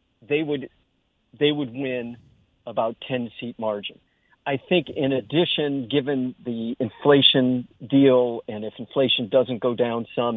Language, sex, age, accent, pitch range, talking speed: English, male, 50-69, American, 120-150 Hz, 135 wpm